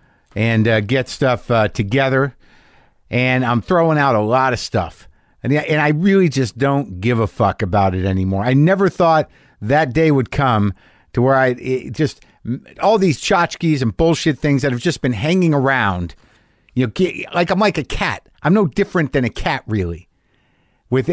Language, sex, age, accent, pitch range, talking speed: English, male, 50-69, American, 115-160 Hz, 185 wpm